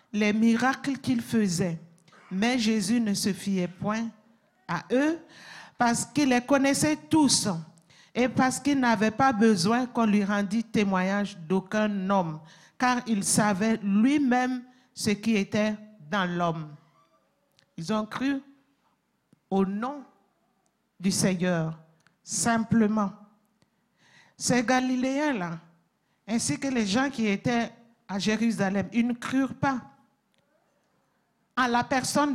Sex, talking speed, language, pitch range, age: male, 120 wpm, French, 200-250 Hz, 50-69